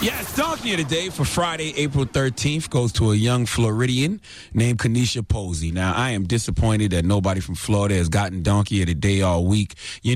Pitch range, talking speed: 100-130 Hz, 200 wpm